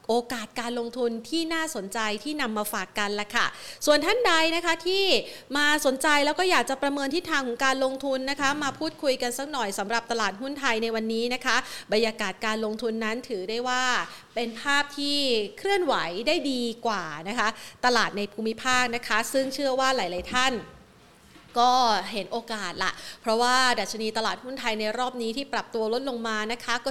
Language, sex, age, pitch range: Thai, female, 30-49, 225-270 Hz